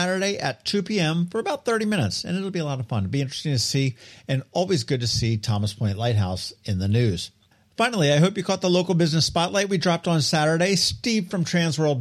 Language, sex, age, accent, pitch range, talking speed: English, male, 50-69, American, 125-195 Hz, 235 wpm